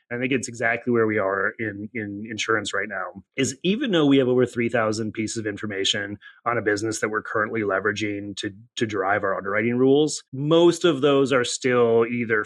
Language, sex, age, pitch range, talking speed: English, male, 30-49, 110-140 Hz, 195 wpm